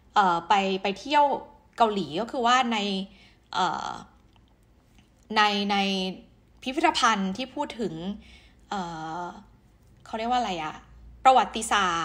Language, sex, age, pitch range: Thai, female, 20-39, 190-250 Hz